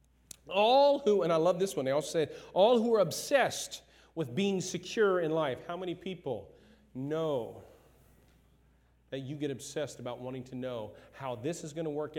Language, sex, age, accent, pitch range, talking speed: English, male, 40-59, American, 160-235 Hz, 180 wpm